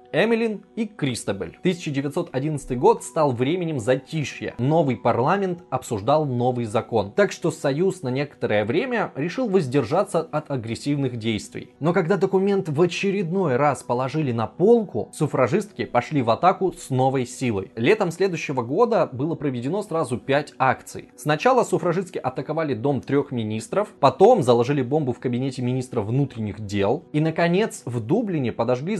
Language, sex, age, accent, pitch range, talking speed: Russian, male, 20-39, native, 120-175 Hz, 140 wpm